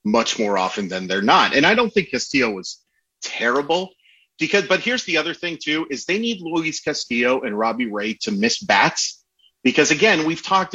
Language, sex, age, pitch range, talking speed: English, male, 30-49, 115-165 Hz, 195 wpm